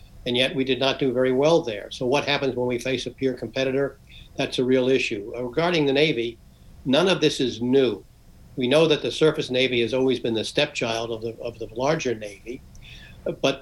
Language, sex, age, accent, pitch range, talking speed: English, male, 60-79, American, 120-145 Hz, 210 wpm